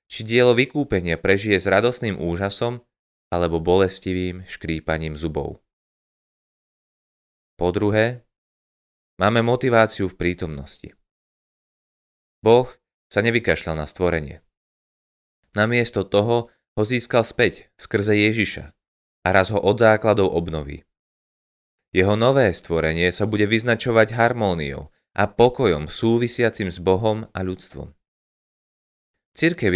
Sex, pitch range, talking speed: male, 90-115 Hz, 100 wpm